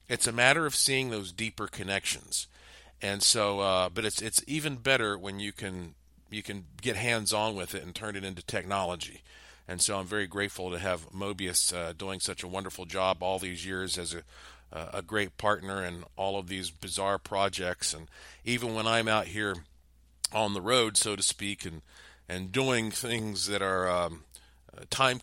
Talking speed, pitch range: 190 wpm, 90-110 Hz